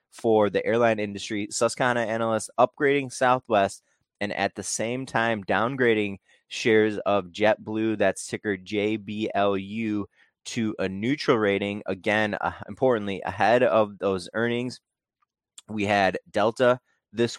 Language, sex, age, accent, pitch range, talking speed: English, male, 20-39, American, 100-120 Hz, 120 wpm